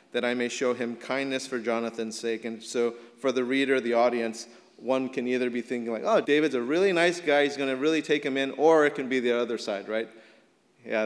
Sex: male